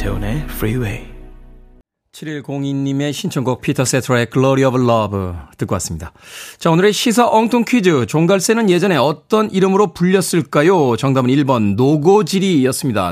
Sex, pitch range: male, 115-155 Hz